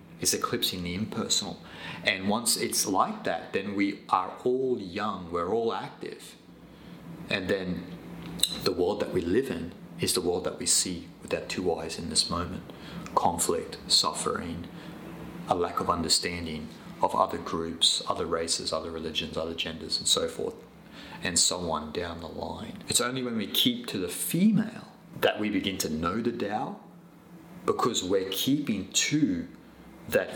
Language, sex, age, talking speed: English, male, 30-49, 160 wpm